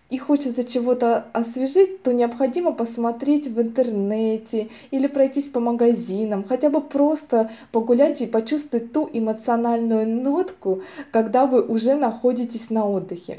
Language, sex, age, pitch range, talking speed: Russian, female, 20-39, 215-275 Hz, 125 wpm